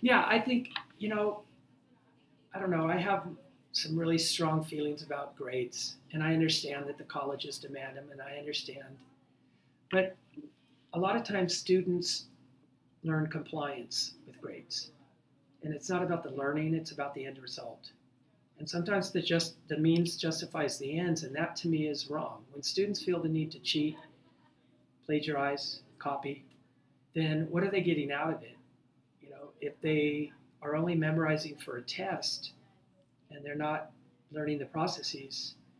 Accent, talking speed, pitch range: American, 160 wpm, 140-165 Hz